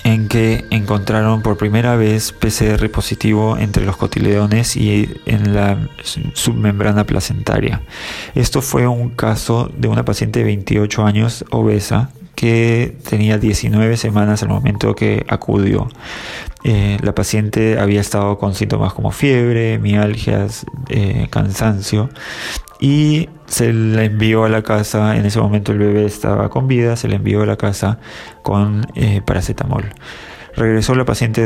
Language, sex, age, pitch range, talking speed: Spanish, male, 20-39, 105-115 Hz, 140 wpm